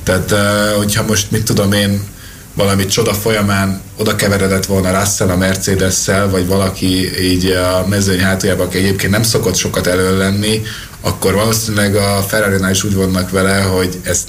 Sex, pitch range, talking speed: male, 95-110 Hz, 160 wpm